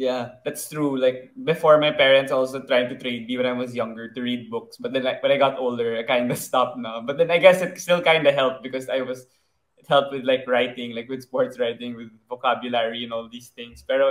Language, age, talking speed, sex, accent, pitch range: Filipino, 20-39, 250 wpm, male, native, 120-155 Hz